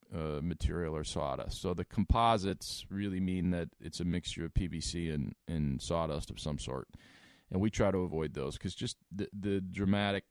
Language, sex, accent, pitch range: English, male, American, 80-95 Hz